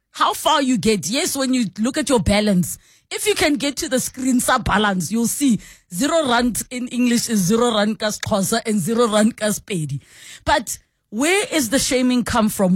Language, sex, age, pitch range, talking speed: English, female, 20-39, 205-255 Hz, 195 wpm